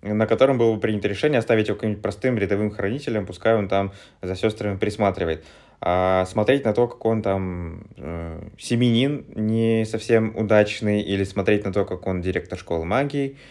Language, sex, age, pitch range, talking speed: Russian, male, 20-39, 95-115 Hz, 175 wpm